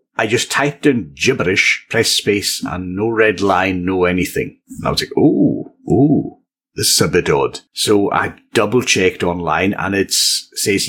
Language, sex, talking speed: English, male, 170 wpm